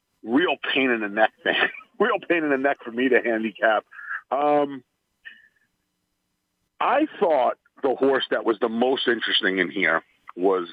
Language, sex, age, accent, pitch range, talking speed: English, male, 40-59, American, 120-195 Hz, 155 wpm